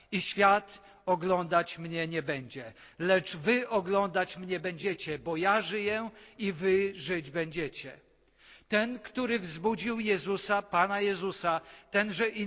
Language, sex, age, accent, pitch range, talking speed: Polish, male, 50-69, native, 175-210 Hz, 130 wpm